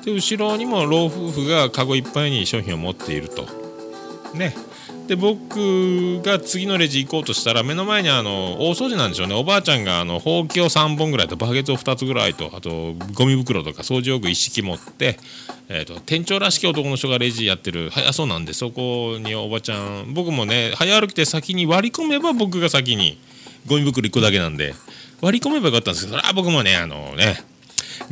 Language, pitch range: Japanese, 105-165 Hz